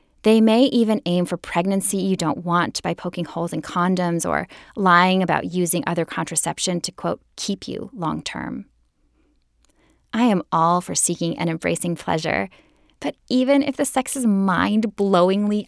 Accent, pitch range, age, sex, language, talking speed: American, 175-220 Hz, 10-29, female, English, 155 wpm